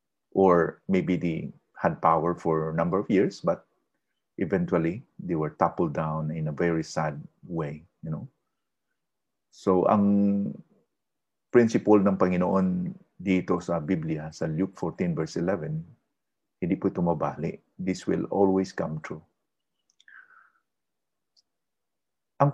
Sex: male